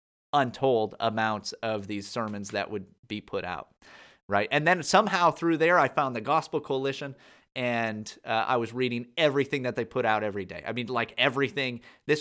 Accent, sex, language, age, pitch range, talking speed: American, male, English, 30-49, 115-145 Hz, 180 wpm